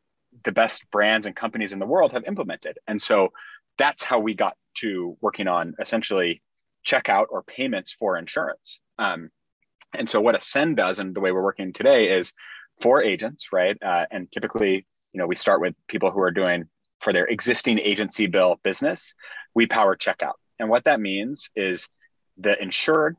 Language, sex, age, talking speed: English, male, 30-49, 180 wpm